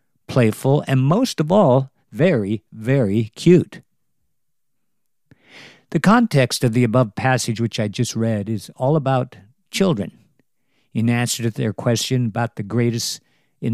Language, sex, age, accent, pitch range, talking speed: English, male, 50-69, American, 110-140 Hz, 135 wpm